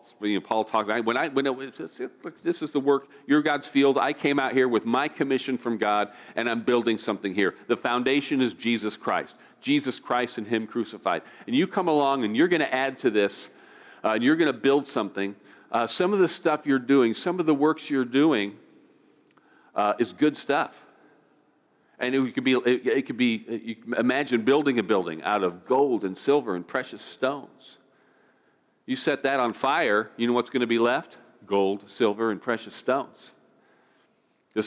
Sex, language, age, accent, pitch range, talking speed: male, English, 50-69, American, 115-145 Hz, 190 wpm